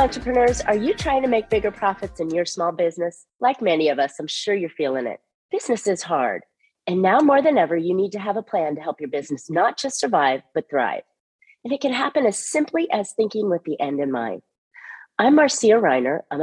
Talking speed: 225 wpm